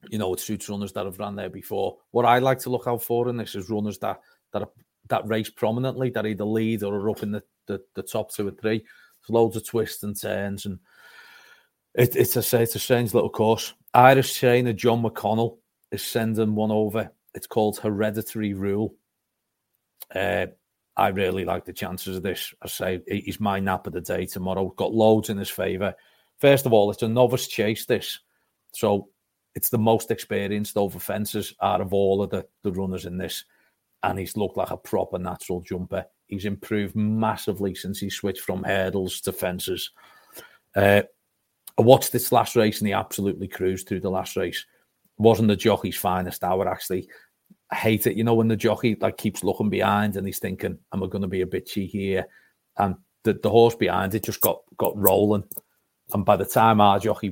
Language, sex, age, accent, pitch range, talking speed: English, male, 40-59, British, 95-110 Hz, 200 wpm